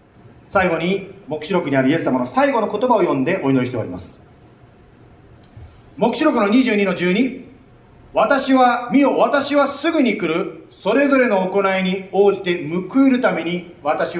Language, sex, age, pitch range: Japanese, male, 40-59, 185-270 Hz